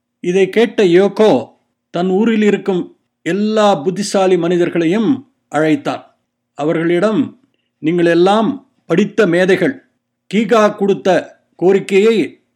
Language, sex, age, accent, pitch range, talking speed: Tamil, male, 50-69, native, 170-215 Hz, 85 wpm